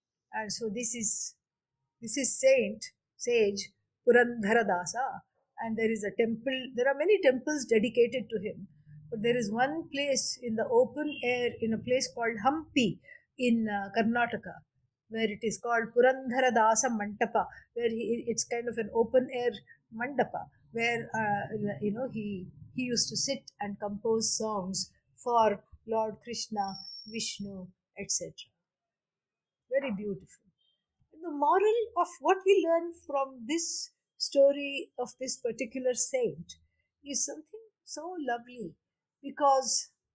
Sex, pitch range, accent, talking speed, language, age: female, 220-285 Hz, Indian, 135 wpm, English, 50-69